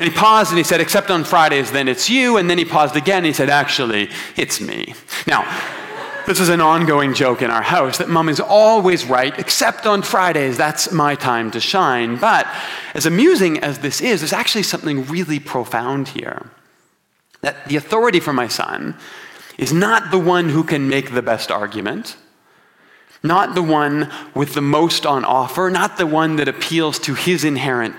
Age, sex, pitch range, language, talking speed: 30-49, male, 125-170 Hz, English, 190 wpm